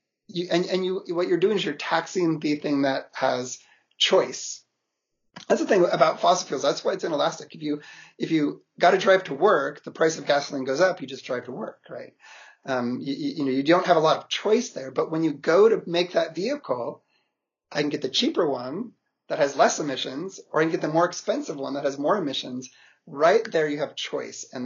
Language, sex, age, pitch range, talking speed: English, male, 30-49, 135-180 Hz, 230 wpm